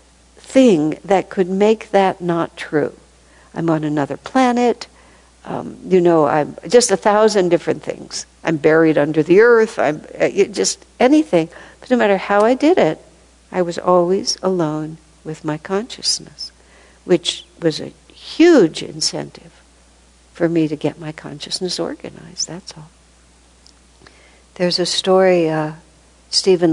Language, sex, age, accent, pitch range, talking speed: English, female, 60-79, American, 140-180 Hz, 140 wpm